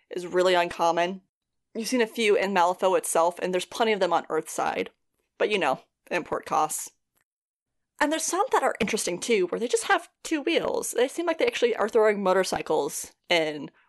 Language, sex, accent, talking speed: English, female, American, 190 wpm